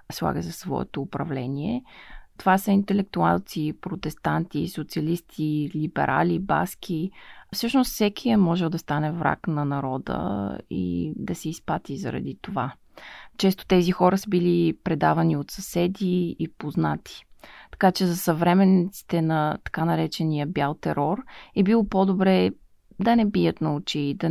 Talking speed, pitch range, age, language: 135 wpm, 155-190 Hz, 20-39, Bulgarian